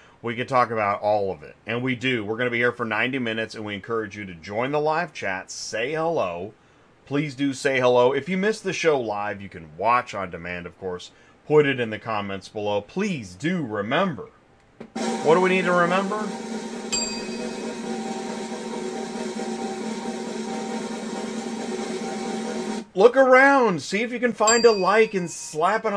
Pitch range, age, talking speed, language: 105-180 Hz, 30-49, 170 wpm, English